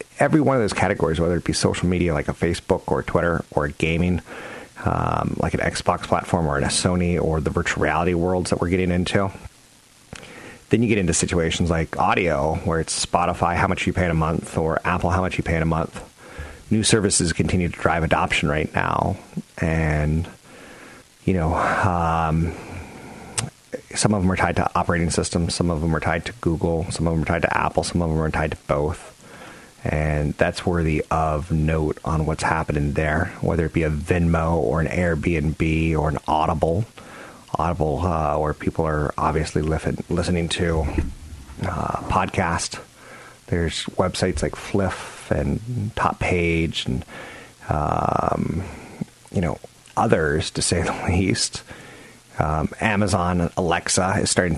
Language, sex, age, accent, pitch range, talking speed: English, male, 30-49, American, 80-90 Hz, 170 wpm